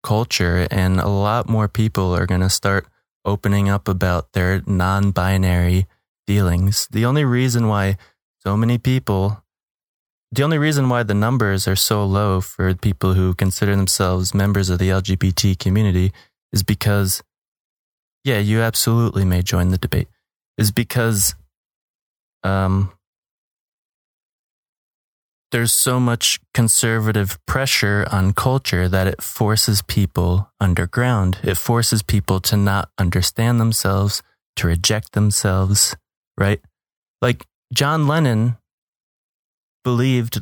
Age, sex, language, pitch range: 20-39, male, English, 95-115 Hz